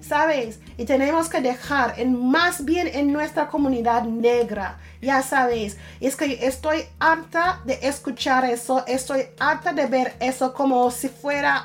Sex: female